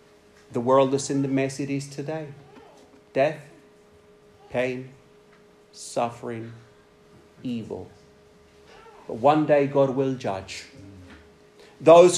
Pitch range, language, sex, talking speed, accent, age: 125-190 Hz, English, male, 100 wpm, British, 40-59